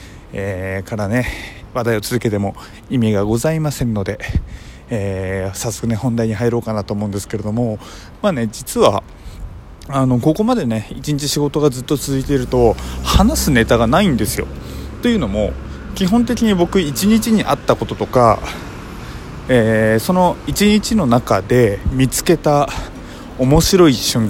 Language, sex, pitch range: Japanese, male, 110-155 Hz